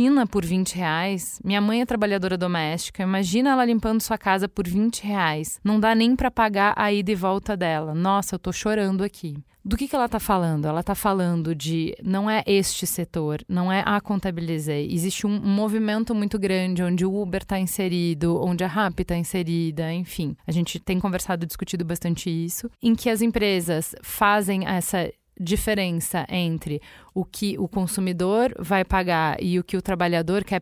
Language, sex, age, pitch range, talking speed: Portuguese, female, 20-39, 180-210 Hz, 180 wpm